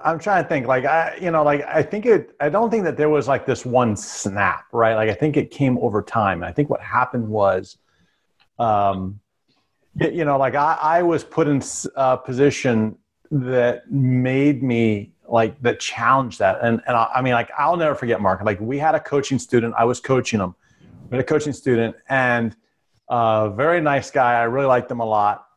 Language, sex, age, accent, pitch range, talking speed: English, male, 40-59, American, 110-130 Hz, 215 wpm